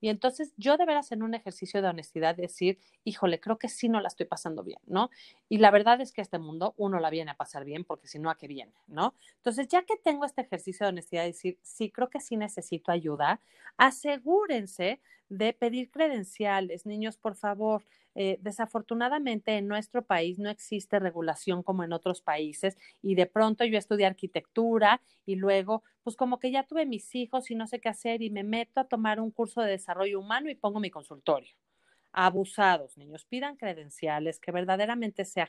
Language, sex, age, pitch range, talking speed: Spanish, female, 40-59, 175-235 Hz, 200 wpm